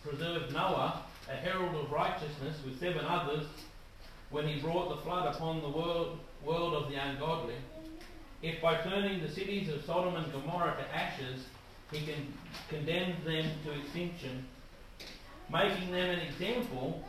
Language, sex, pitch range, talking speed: English, male, 135-170 Hz, 150 wpm